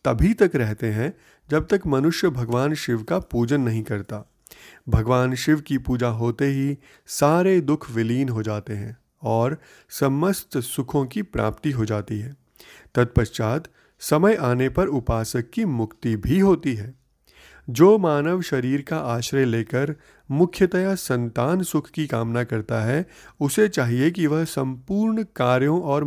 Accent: native